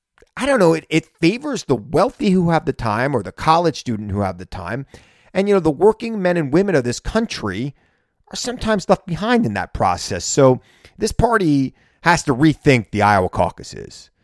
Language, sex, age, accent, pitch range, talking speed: English, male, 30-49, American, 125-180 Hz, 200 wpm